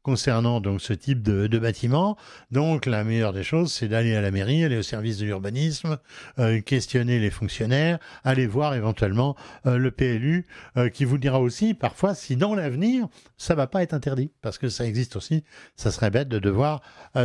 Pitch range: 110-150 Hz